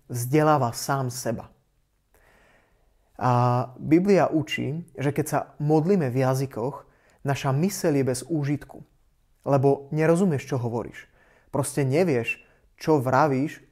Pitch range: 130-160 Hz